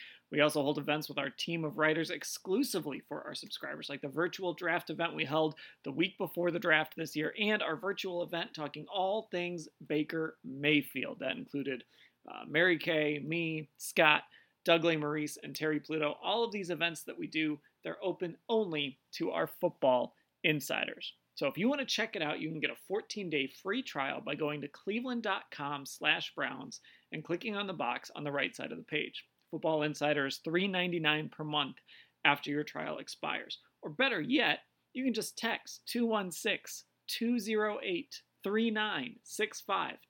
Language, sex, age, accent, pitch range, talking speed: English, male, 30-49, American, 150-210 Hz, 170 wpm